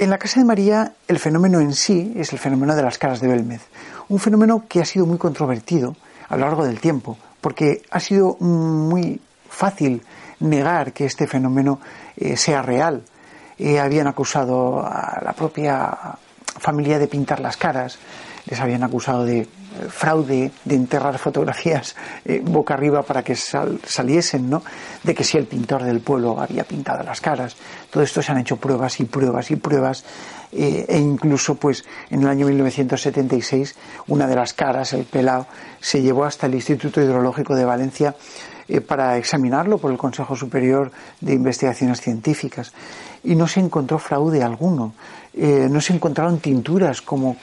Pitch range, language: 130-155 Hz, Spanish